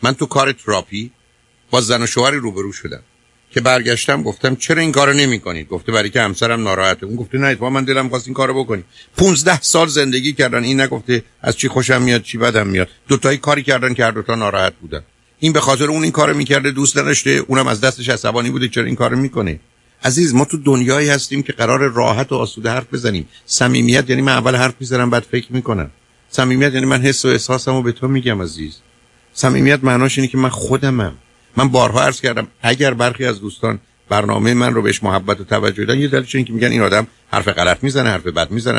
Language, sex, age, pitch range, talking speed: Persian, male, 50-69, 115-135 Hz, 215 wpm